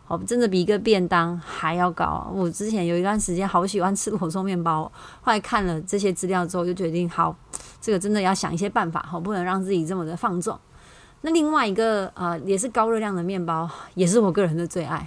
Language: Chinese